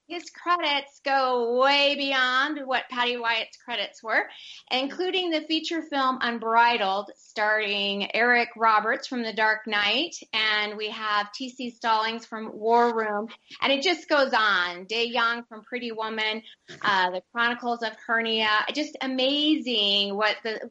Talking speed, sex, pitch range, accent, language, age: 140 wpm, female, 215-285 Hz, American, English, 30-49